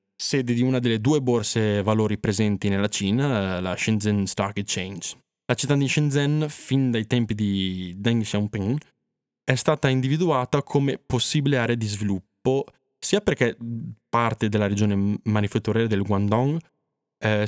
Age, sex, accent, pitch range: 20-39, male, native, 100-130 Hz